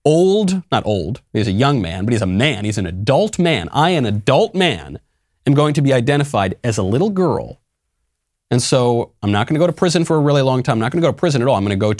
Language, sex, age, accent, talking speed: English, male, 30-49, American, 275 wpm